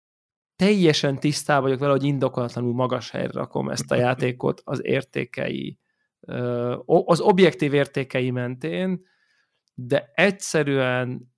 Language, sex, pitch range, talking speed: Hungarian, male, 125-145 Hz, 105 wpm